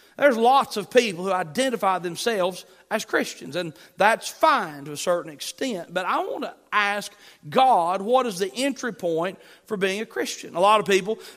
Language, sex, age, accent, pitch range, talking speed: English, male, 40-59, American, 185-225 Hz, 185 wpm